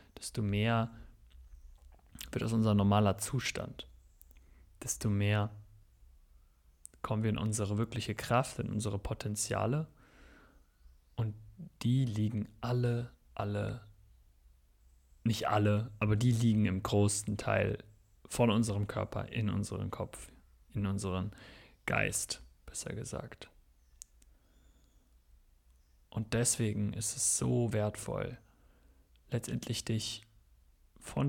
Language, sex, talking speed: German, male, 100 wpm